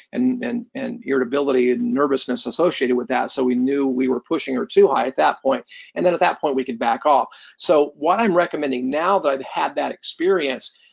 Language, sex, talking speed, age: English, male, 220 wpm, 40-59